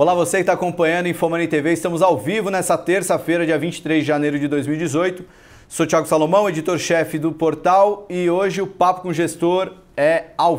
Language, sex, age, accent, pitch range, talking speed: Portuguese, male, 30-49, Brazilian, 145-175 Hz, 195 wpm